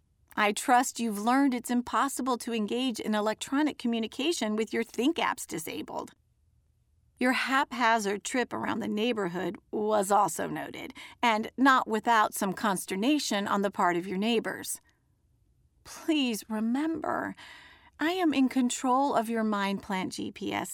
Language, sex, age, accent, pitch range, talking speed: English, female, 40-59, American, 215-270 Hz, 130 wpm